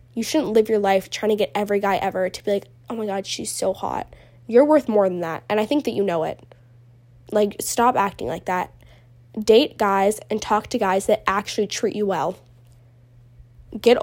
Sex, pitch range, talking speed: female, 180-225 Hz, 210 wpm